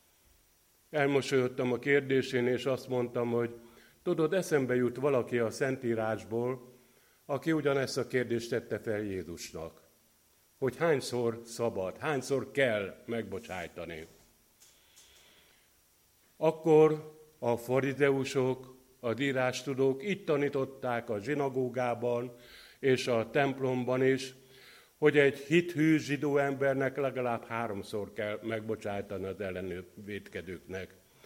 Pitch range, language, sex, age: 110-140 Hz, Hungarian, male, 50-69